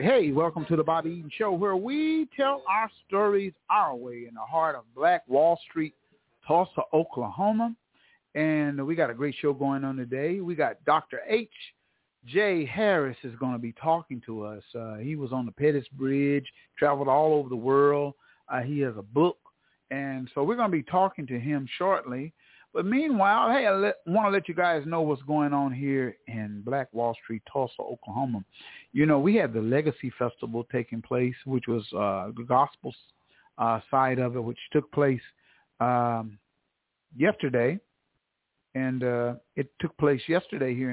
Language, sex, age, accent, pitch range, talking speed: English, male, 50-69, American, 125-170 Hz, 180 wpm